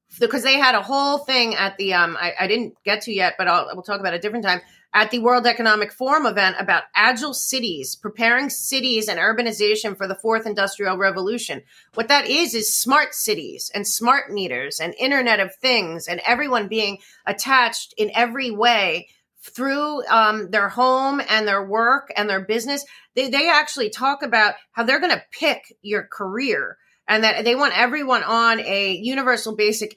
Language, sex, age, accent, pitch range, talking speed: English, female, 30-49, American, 210-260 Hz, 190 wpm